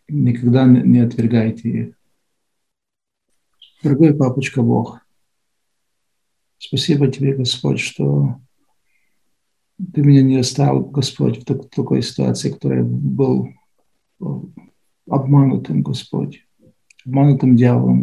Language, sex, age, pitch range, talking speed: Russian, male, 50-69, 115-145 Hz, 85 wpm